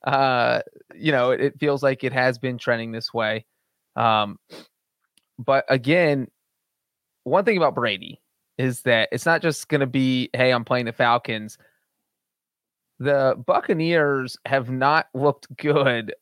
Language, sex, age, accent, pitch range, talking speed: English, male, 30-49, American, 135-175 Hz, 140 wpm